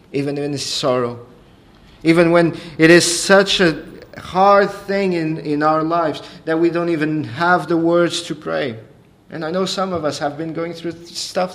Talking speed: 180 wpm